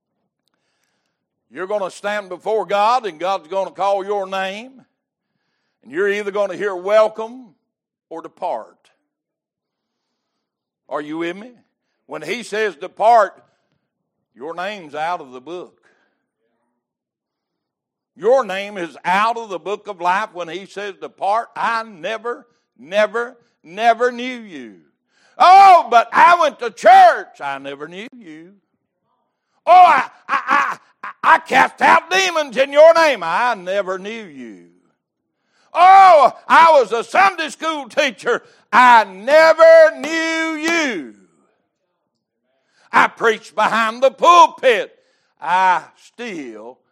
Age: 60-79